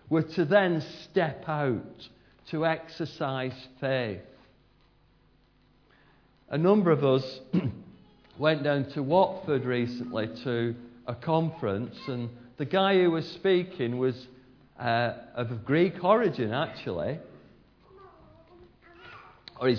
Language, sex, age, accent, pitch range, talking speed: English, male, 50-69, British, 105-145 Hz, 100 wpm